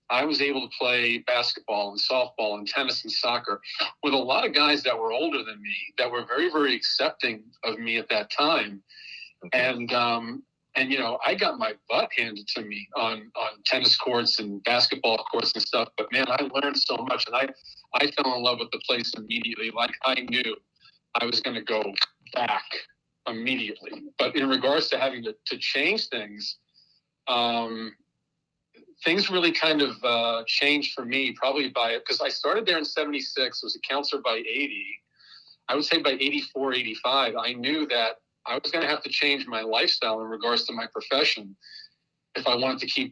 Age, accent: 40-59, American